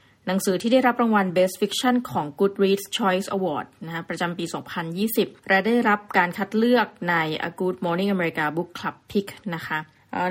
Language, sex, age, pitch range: Thai, female, 20-39, 175-215 Hz